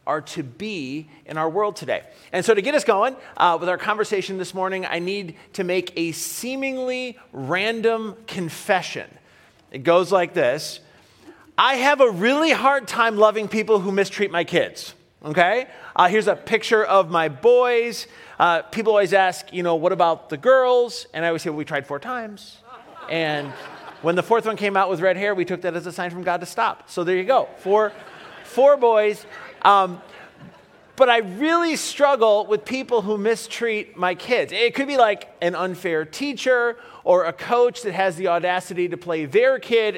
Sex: male